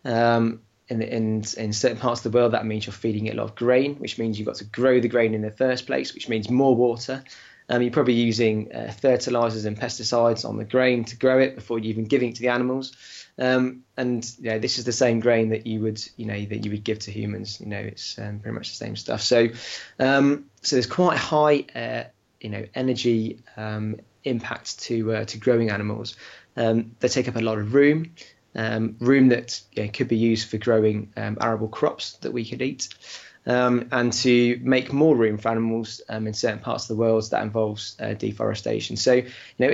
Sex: male